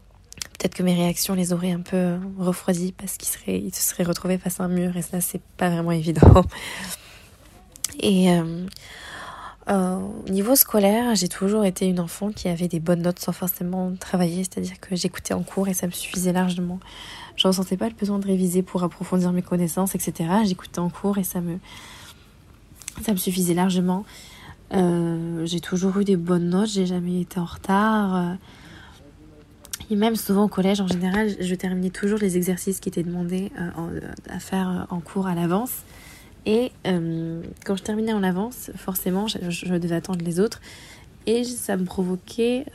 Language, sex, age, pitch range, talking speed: French, female, 20-39, 175-195 Hz, 180 wpm